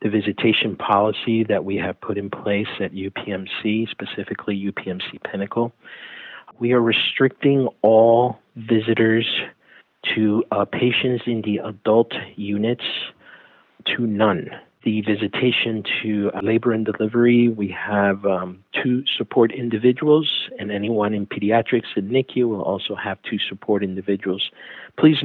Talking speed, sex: 130 wpm, male